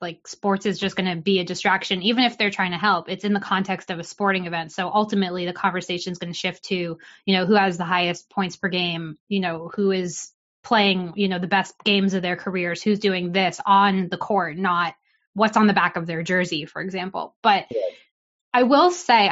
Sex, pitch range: female, 185-220 Hz